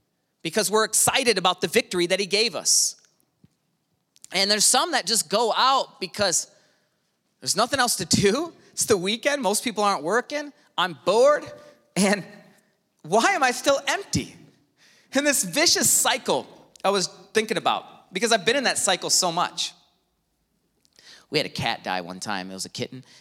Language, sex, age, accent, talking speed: English, male, 30-49, American, 170 wpm